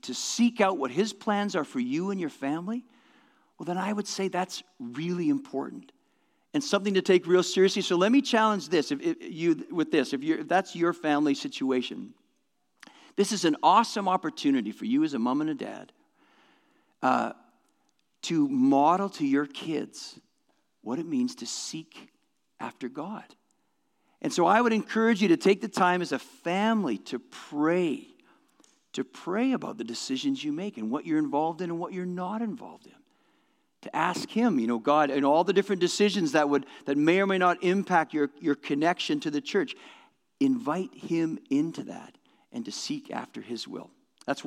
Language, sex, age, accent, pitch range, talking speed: English, male, 50-69, American, 180-280 Hz, 185 wpm